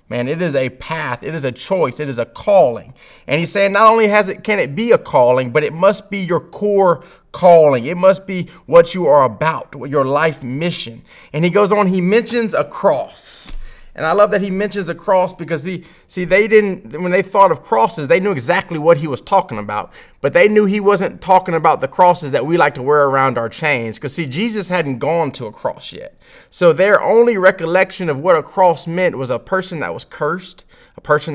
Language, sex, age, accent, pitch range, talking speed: English, male, 30-49, American, 155-205 Hz, 230 wpm